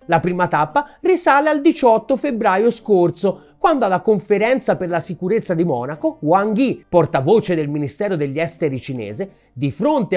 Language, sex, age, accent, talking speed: Italian, male, 30-49, native, 155 wpm